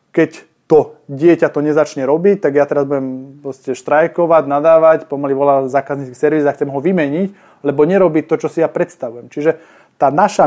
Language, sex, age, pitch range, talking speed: Slovak, male, 20-39, 150-205 Hz, 170 wpm